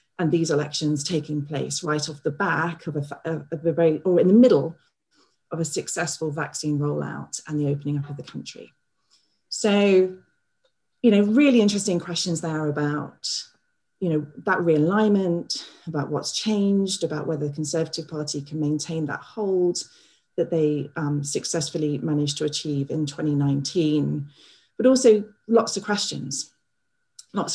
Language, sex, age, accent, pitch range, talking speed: English, female, 40-59, British, 145-175 Hz, 150 wpm